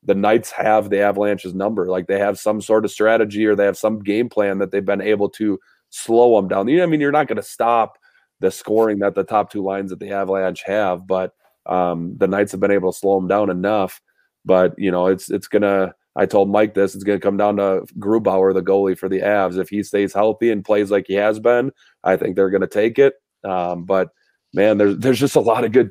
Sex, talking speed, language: male, 255 wpm, English